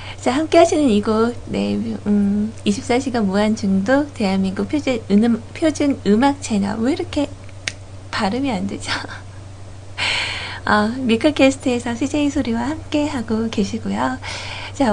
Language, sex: Korean, female